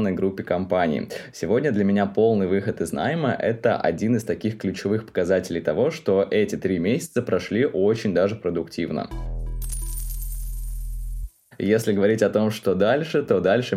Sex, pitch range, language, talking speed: male, 95-120 Hz, Russian, 140 wpm